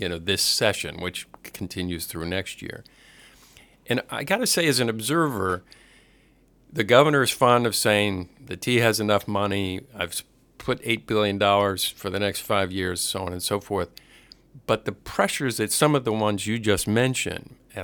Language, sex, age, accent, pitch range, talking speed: English, male, 50-69, American, 95-125 Hz, 180 wpm